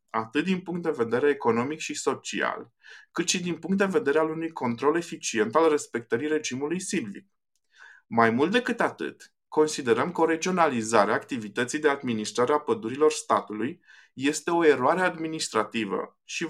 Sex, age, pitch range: male, 20-39, 125-170 Hz